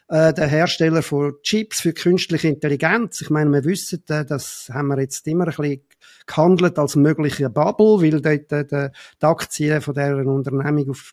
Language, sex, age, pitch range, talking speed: German, male, 50-69, 140-175 Hz, 160 wpm